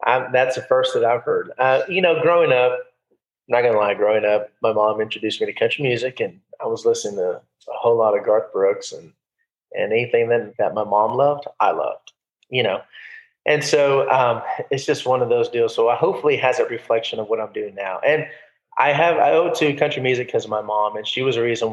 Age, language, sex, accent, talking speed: 30-49, English, male, American, 230 wpm